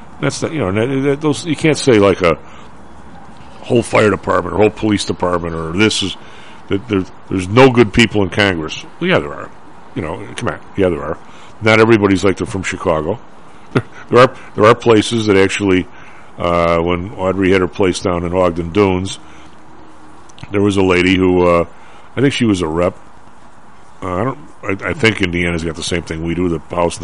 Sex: male